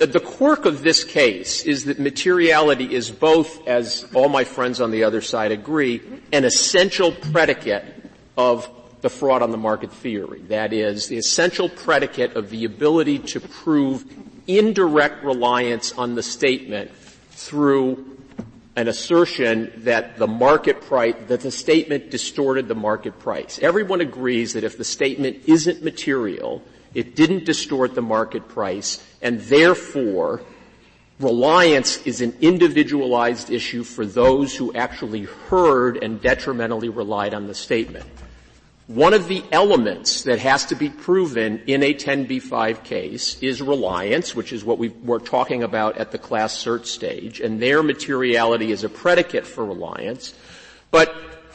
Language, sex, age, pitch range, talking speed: English, male, 50-69, 115-160 Hz, 145 wpm